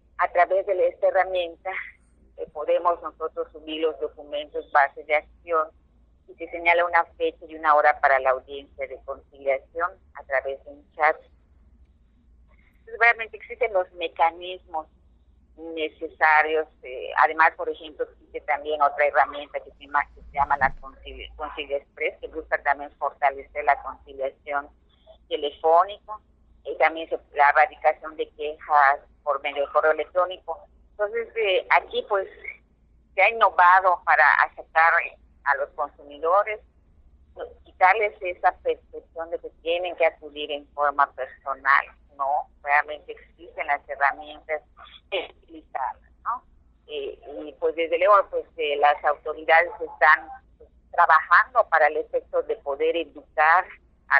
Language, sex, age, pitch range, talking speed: Spanish, female, 40-59, 145-215 Hz, 140 wpm